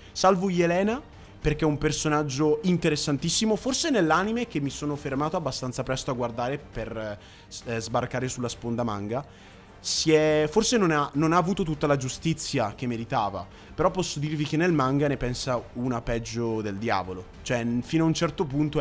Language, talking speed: Italian, 165 wpm